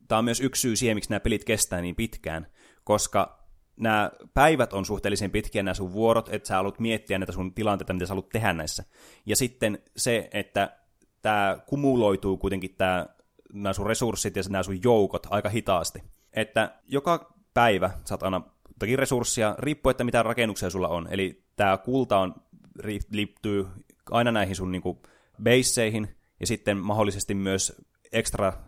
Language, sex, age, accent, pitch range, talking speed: Finnish, male, 20-39, native, 95-110 Hz, 160 wpm